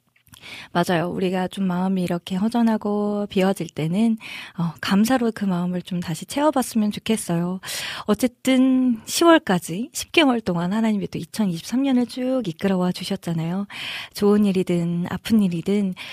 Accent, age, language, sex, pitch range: native, 20-39, Korean, female, 180-250 Hz